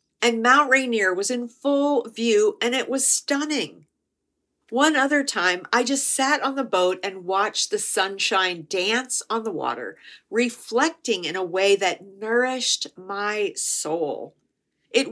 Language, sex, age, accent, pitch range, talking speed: English, female, 50-69, American, 195-270 Hz, 145 wpm